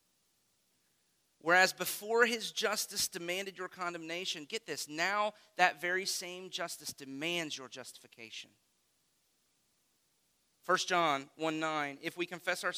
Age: 40-59